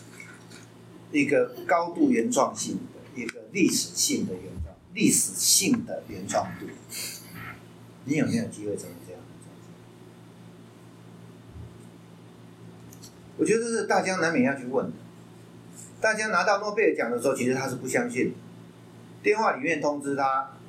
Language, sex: Chinese, male